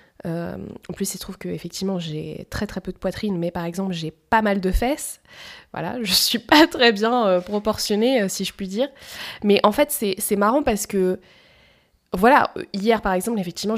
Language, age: French, 20-39